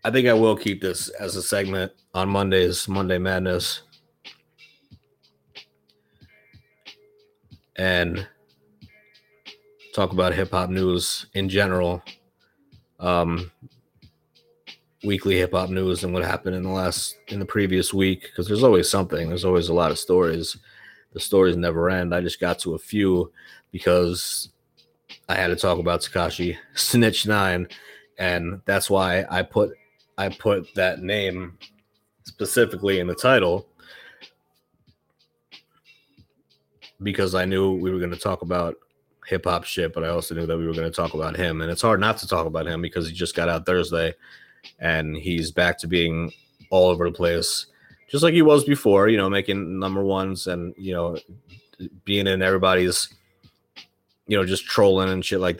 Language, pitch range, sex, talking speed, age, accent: English, 85-100 Hz, male, 160 wpm, 30-49, American